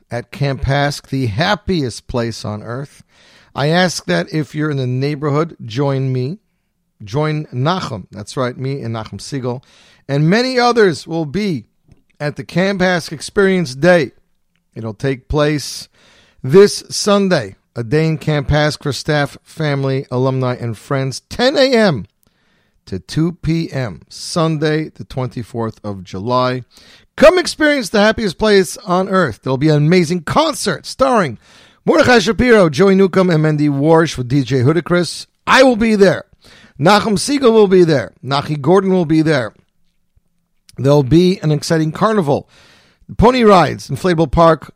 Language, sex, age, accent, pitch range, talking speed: English, male, 50-69, American, 130-185 Hz, 145 wpm